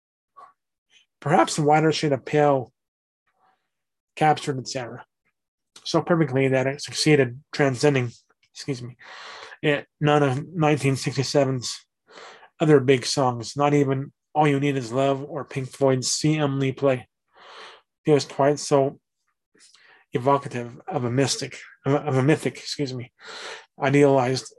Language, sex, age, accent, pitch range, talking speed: English, male, 30-49, American, 130-145 Hz, 120 wpm